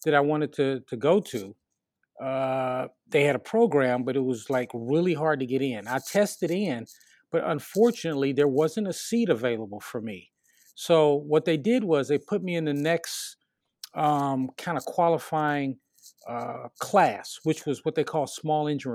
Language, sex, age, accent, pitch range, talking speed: English, male, 40-59, American, 135-165 Hz, 180 wpm